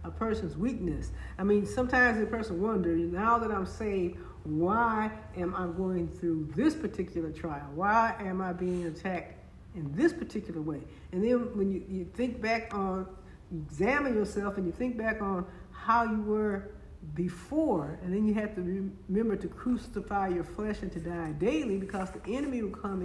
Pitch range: 175-225 Hz